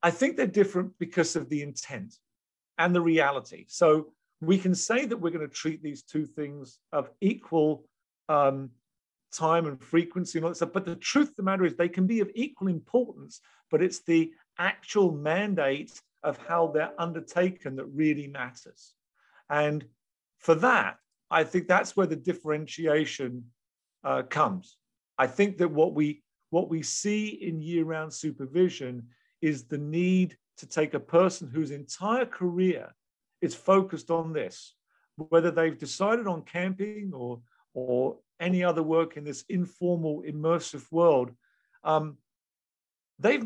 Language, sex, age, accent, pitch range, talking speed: English, male, 50-69, British, 150-185 Hz, 155 wpm